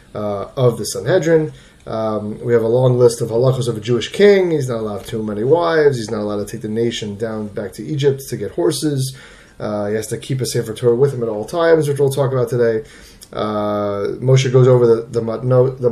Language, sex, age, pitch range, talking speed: English, male, 30-49, 110-140 Hz, 225 wpm